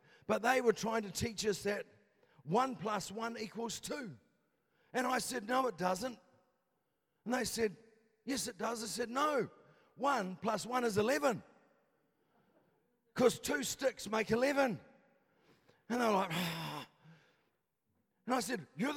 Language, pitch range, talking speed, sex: English, 215-255 Hz, 145 wpm, male